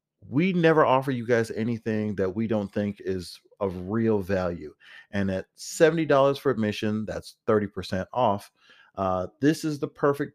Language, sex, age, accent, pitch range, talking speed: English, male, 40-59, American, 100-130 Hz, 170 wpm